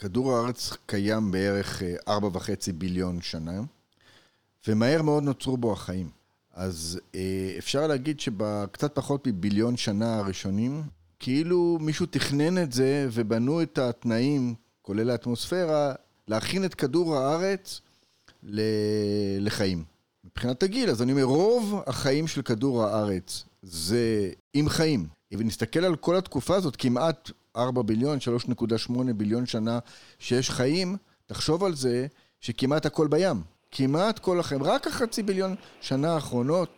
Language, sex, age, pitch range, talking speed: Hebrew, male, 40-59, 105-150 Hz, 130 wpm